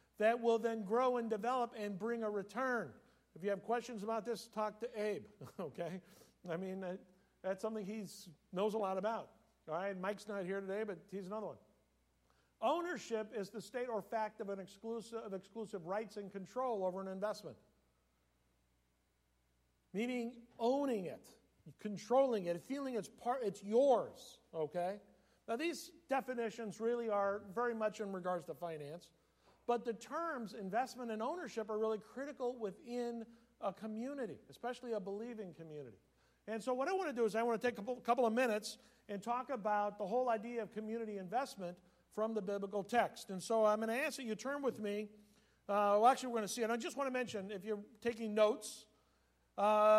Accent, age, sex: American, 50-69, male